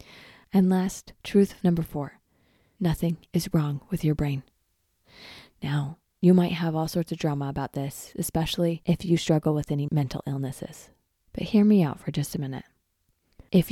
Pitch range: 160-195 Hz